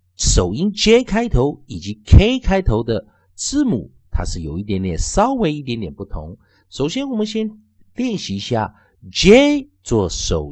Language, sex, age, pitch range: Chinese, male, 50-69, 90-140 Hz